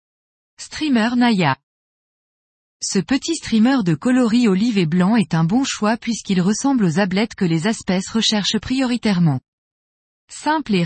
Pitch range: 180-245 Hz